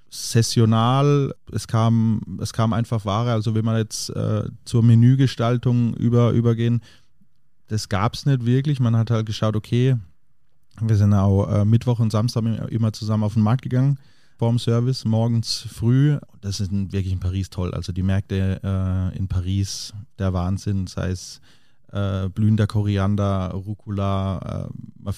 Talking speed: 155 wpm